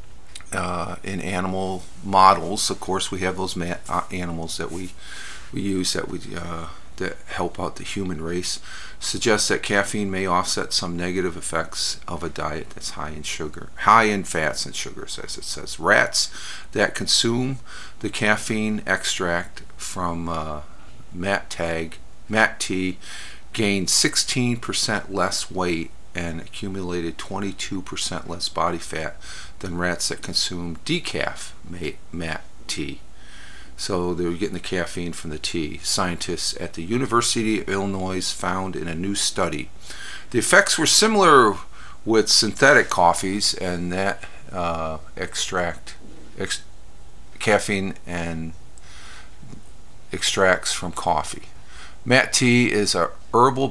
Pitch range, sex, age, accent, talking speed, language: 85-100 Hz, male, 50-69, American, 130 wpm, English